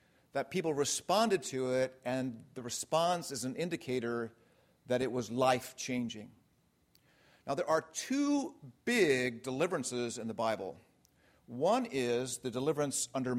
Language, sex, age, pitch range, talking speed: English, male, 50-69, 120-150 Hz, 130 wpm